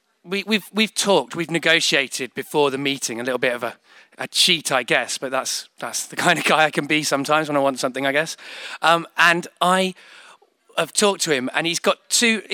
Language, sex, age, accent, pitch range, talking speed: English, male, 30-49, British, 140-190 Hz, 220 wpm